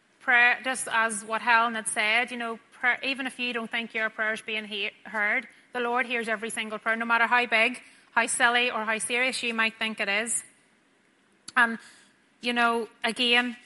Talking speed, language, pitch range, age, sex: 200 wpm, English, 215-245 Hz, 30-49, female